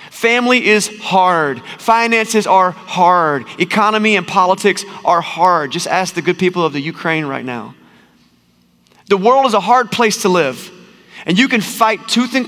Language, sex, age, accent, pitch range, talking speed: English, male, 30-49, American, 145-195 Hz, 170 wpm